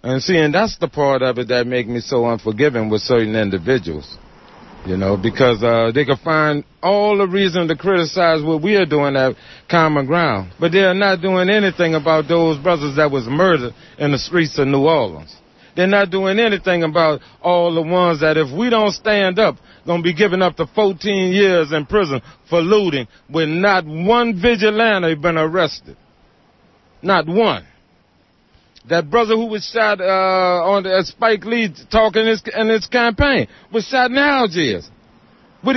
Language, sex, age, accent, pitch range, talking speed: English, male, 40-59, American, 145-220 Hz, 180 wpm